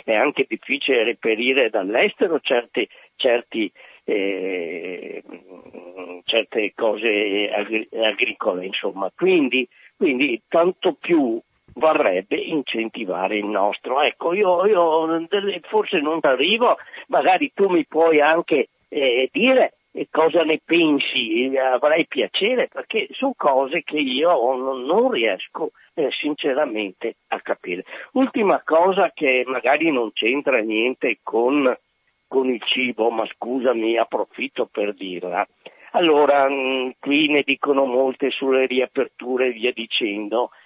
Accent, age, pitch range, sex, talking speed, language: native, 50-69, 115-165 Hz, male, 120 wpm, Italian